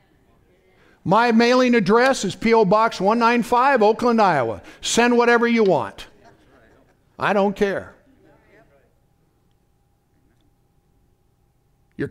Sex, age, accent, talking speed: male, 60-79, American, 85 wpm